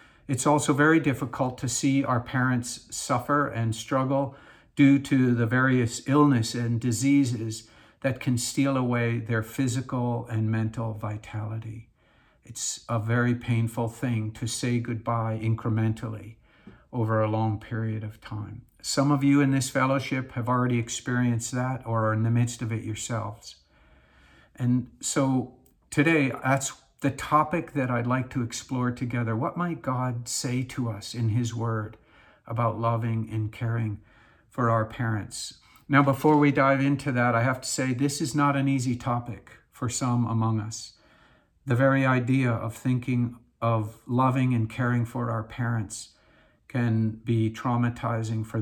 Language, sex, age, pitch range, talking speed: English, male, 50-69, 115-130 Hz, 155 wpm